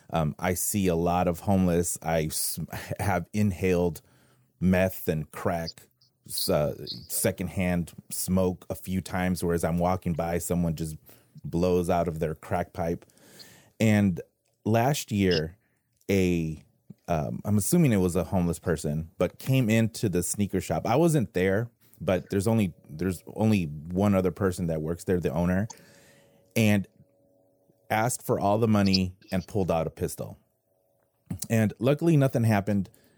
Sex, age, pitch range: male, 30-49, 85-105 Hz